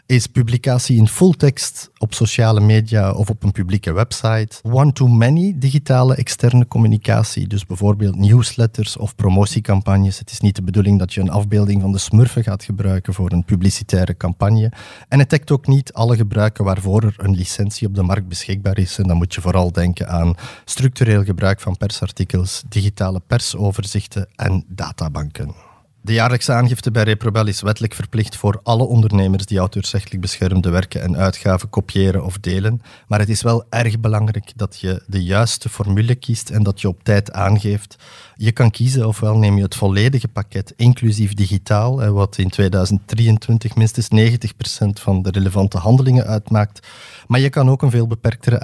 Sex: male